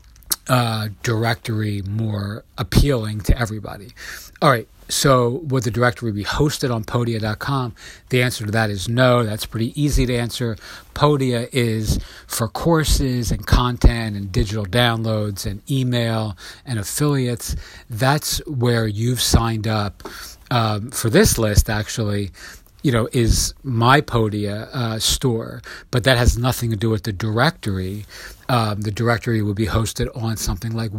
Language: English